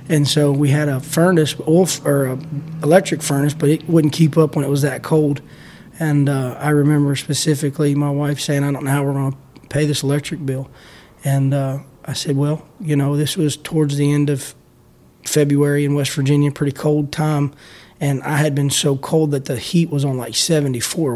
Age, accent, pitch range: 20-39, American, 140-150 Hz